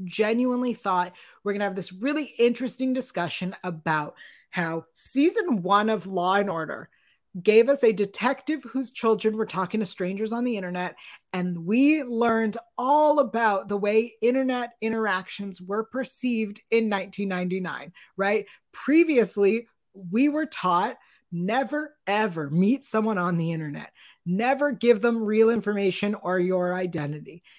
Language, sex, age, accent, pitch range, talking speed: English, female, 30-49, American, 190-260 Hz, 135 wpm